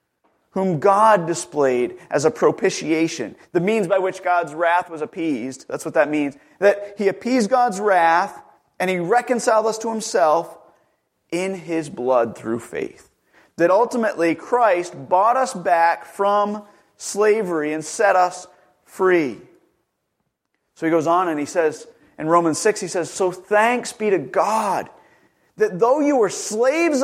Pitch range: 175-255 Hz